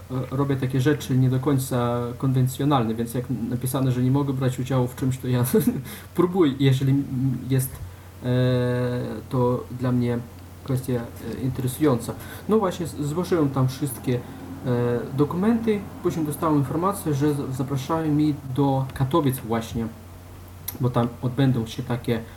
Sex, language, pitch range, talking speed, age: male, Polish, 115-140 Hz, 125 wpm, 20-39